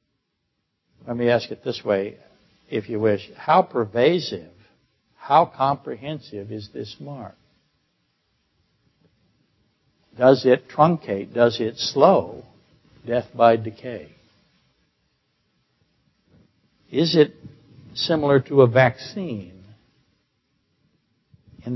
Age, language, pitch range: 60-79, English, 110-130 Hz